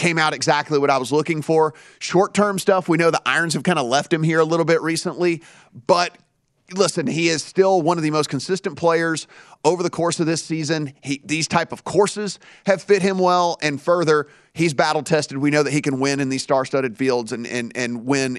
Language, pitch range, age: English, 135-165 Hz, 30-49